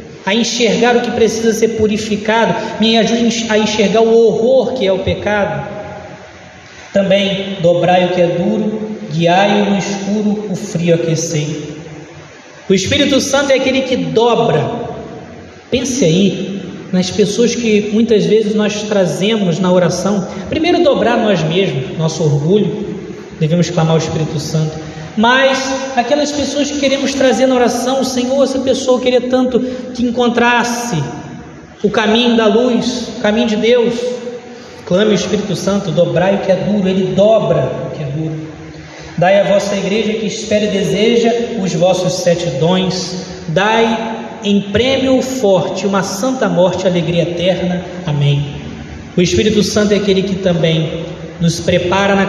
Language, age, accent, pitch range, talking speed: Portuguese, 20-39, Brazilian, 180-230 Hz, 150 wpm